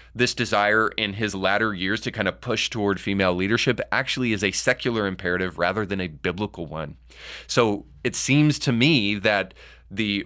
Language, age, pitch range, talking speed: English, 30-49, 95-115 Hz, 175 wpm